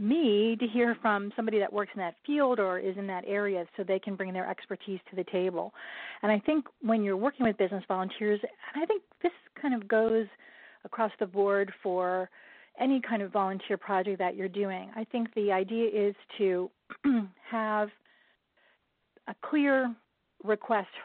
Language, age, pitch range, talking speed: English, 40-59, 195-225 Hz, 175 wpm